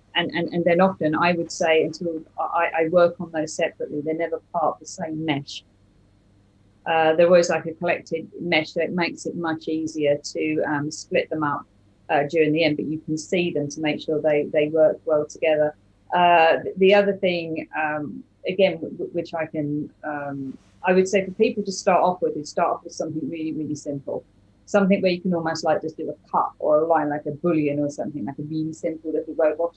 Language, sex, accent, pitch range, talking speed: English, female, British, 150-170 Hz, 215 wpm